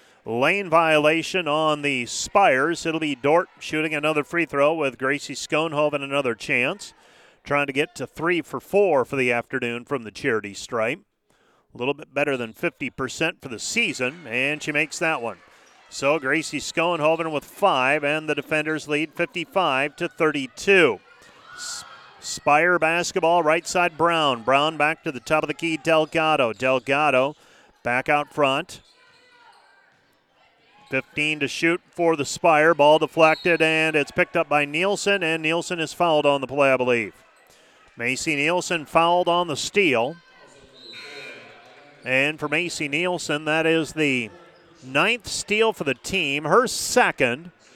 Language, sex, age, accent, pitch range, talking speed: English, male, 40-59, American, 140-170 Hz, 150 wpm